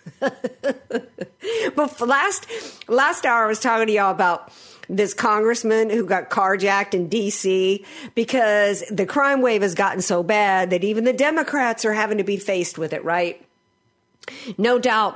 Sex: female